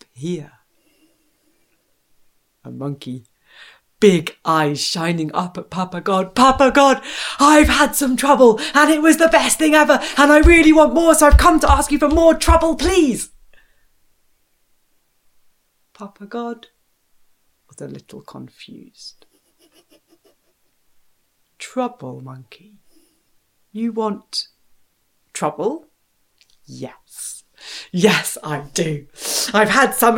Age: 40-59